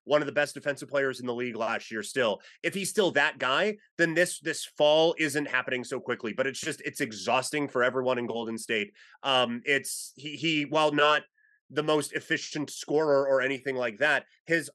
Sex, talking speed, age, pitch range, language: male, 205 wpm, 30-49, 130-155 Hz, English